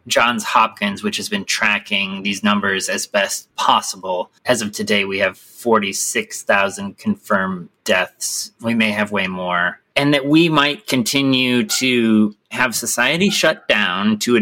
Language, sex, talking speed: English, male, 150 wpm